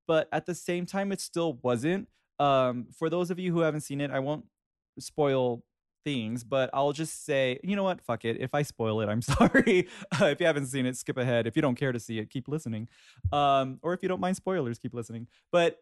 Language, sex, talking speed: English, male, 235 wpm